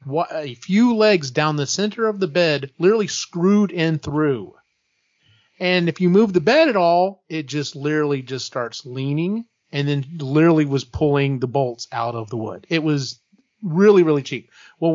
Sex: male